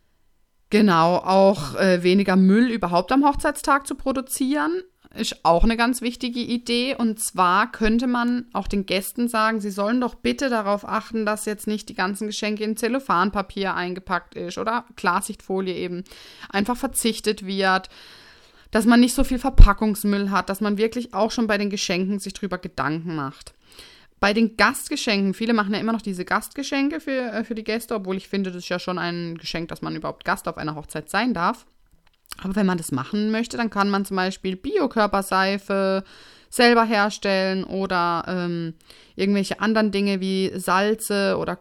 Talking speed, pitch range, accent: 170 wpm, 185-225 Hz, German